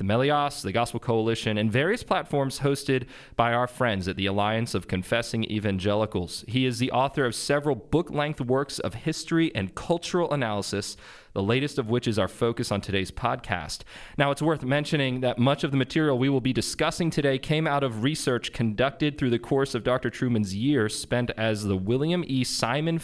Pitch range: 110-145 Hz